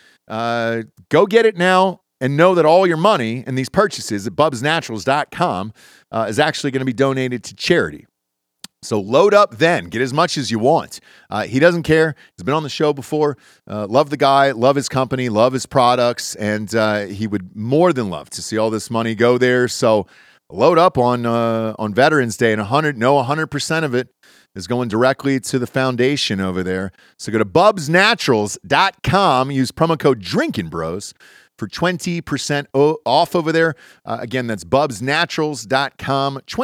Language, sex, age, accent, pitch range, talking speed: English, male, 40-59, American, 110-155 Hz, 180 wpm